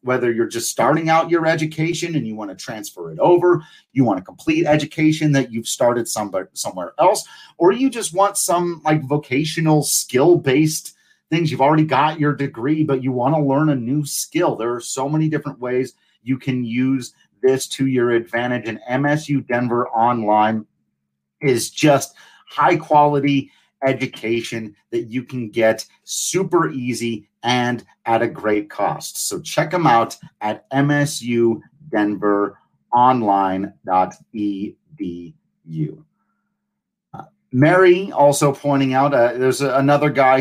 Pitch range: 115-150 Hz